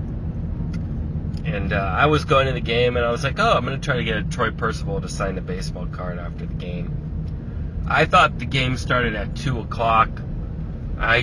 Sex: male